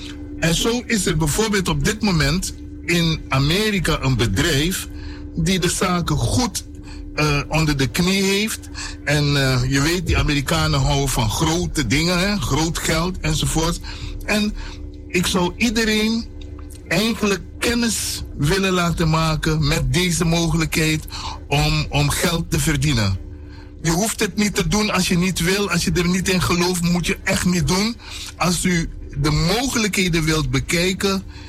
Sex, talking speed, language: male, 150 wpm, Dutch